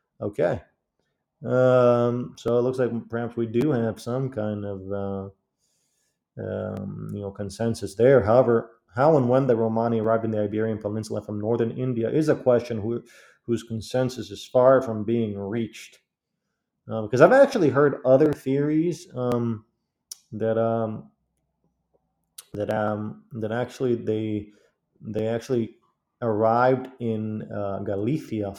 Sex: male